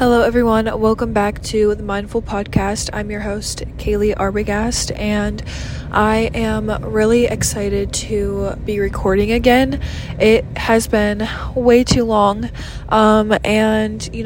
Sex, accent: female, American